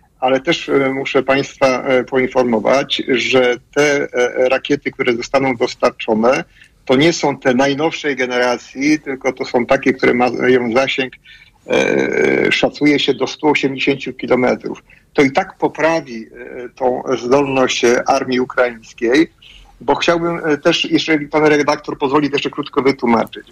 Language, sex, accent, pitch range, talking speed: Polish, male, native, 130-150 Hz, 120 wpm